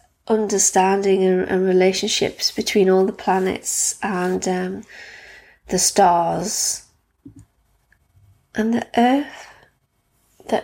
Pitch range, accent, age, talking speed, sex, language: 190-230 Hz, British, 20-39, 90 wpm, female, English